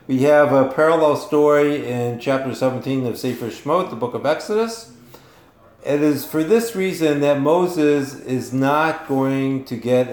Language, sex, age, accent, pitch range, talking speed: English, male, 50-69, American, 125-145 Hz, 160 wpm